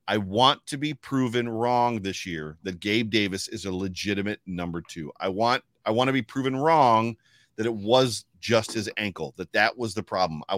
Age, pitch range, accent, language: 40-59, 105-130 Hz, American, English